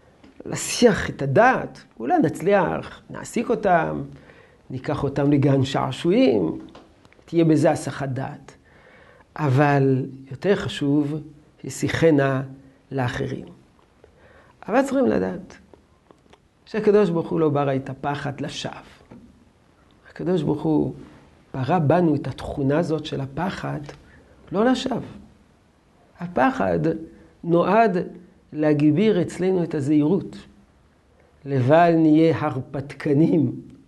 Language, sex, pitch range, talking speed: Hebrew, male, 140-215 Hz, 90 wpm